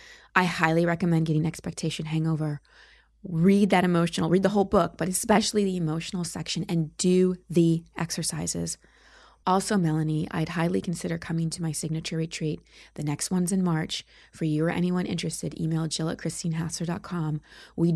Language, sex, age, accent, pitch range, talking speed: English, female, 20-39, American, 160-185 Hz, 155 wpm